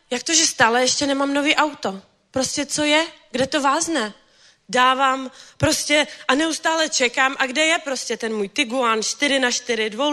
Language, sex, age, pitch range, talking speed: Czech, female, 20-39, 255-325 Hz, 165 wpm